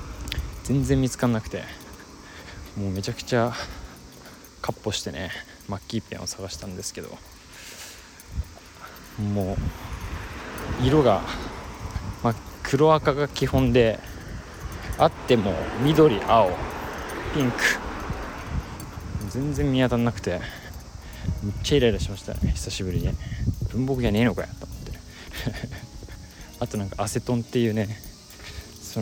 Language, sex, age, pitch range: Japanese, male, 20-39, 85-110 Hz